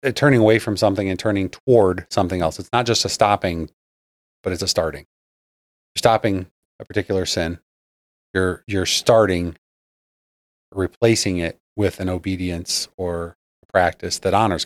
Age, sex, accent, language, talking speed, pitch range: 30-49, male, American, English, 145 wpm, 90-120 Hz